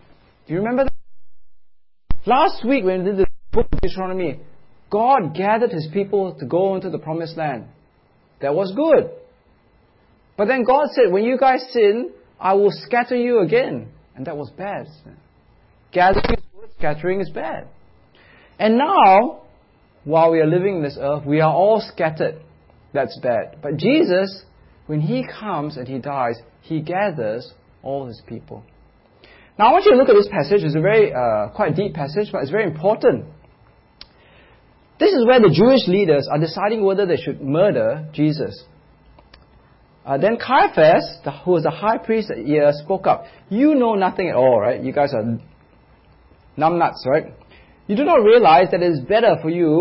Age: 30-49